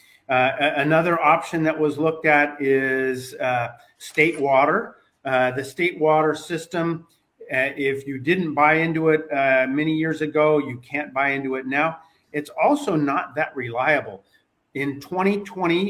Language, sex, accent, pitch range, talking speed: English, male, American, 135-165 Hz, 150 wpm